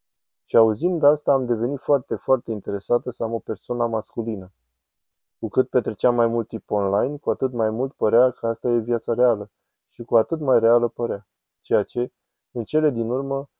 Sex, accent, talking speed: male, native, 185 wpm